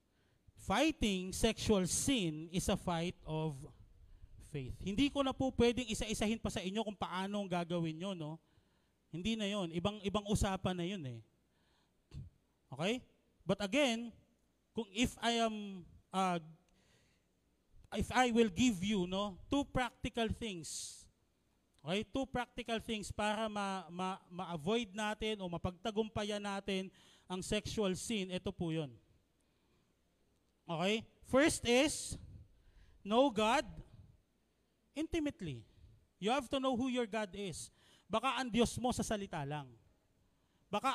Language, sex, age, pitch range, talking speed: Filipino, male, 40-59, 170-230 Hz, 130 wpm